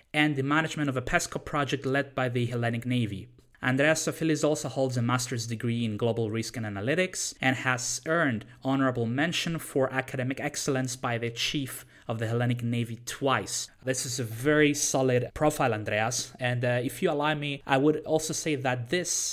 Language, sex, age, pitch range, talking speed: English, male, 20-39, 120-145 Hz, 185 wpm